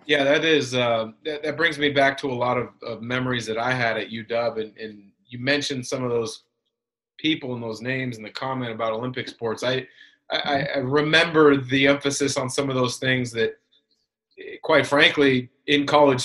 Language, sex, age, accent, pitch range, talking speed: English, male, 30-49, American, 125-150 Hz, 190 wpm